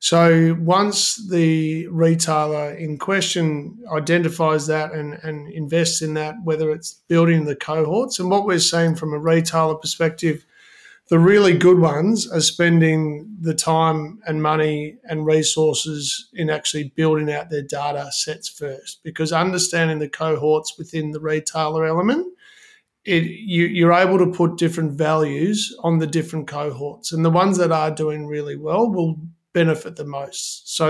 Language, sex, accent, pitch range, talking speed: English, male, Australian, 155-175 Hz, 150 wpm